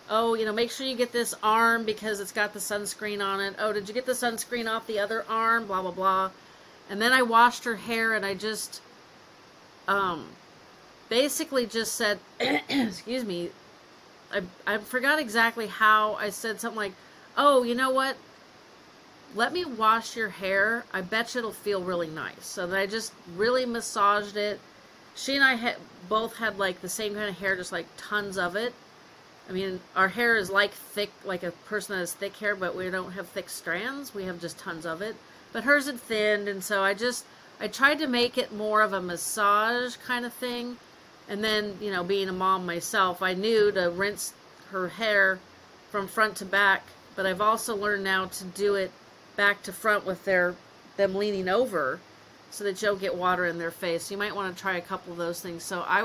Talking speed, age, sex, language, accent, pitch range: 210 wpm, 40-59, female, English, American, 190-230 Hz